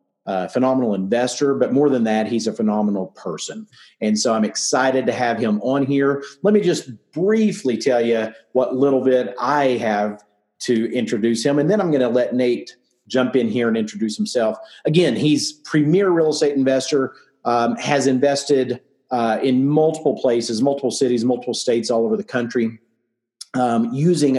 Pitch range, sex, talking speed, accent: 115-145 Hz, male, 170 wpm, American